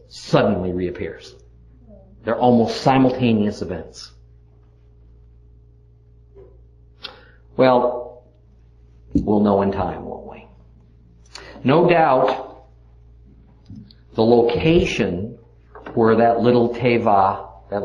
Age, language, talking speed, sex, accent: 50-69, English, 75 wpm, male, American